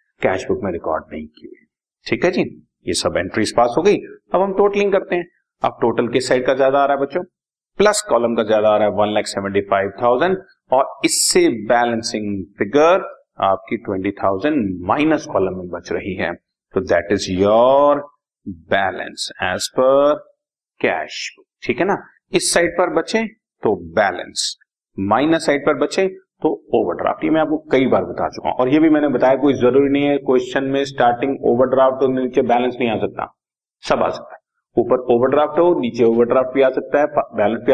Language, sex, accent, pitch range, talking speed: Hindi, male, native, 115-165 Hz, 140 wpm